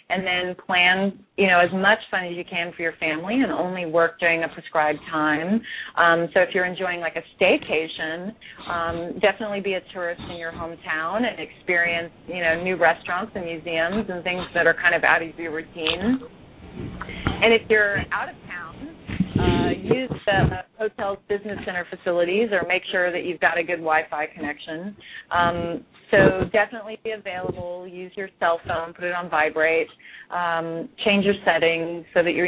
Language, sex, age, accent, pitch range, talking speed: English, female, 30-49, American, 165-190 Hz, 180 wpm